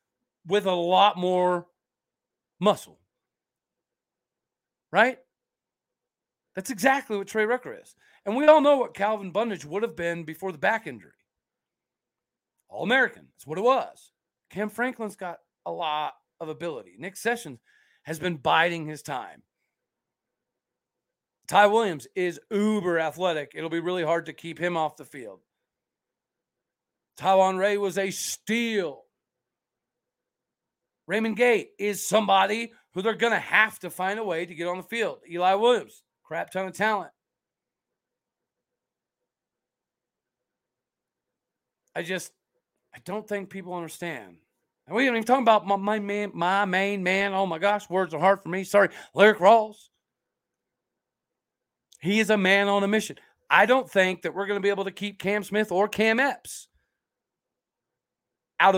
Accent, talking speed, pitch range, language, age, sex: American, 145 wpm, 175-215 Hz, English, 40-59, male